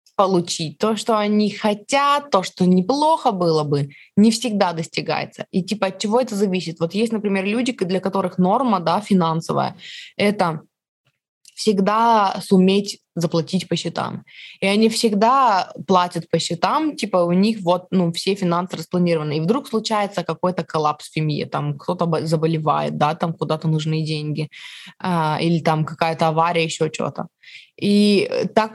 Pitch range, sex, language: 165-205 Hz, female, Russian